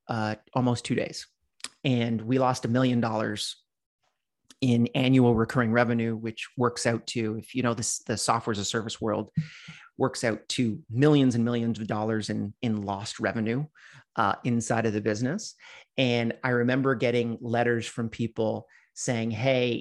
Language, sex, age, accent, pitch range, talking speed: English, male, 30-49, American, 115-130 Hz, 160 wpm